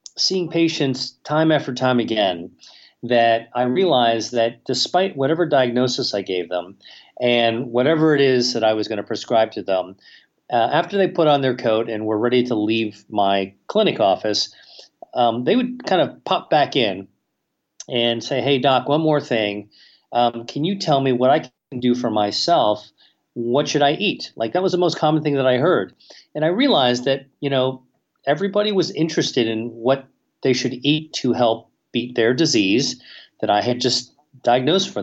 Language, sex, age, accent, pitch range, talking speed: English, male, 40-59, American, 115-145 Hz, 185 wpm